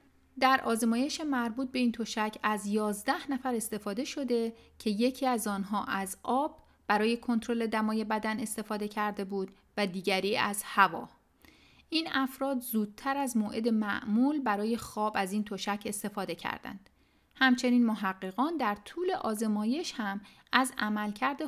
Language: Persian